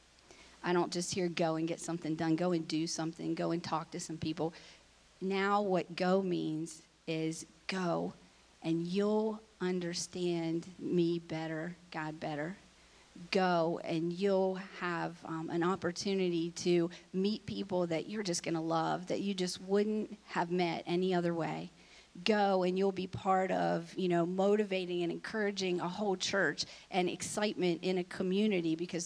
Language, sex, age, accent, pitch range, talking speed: English, female, 40-59, American, 165-190 Hz, 160 wpm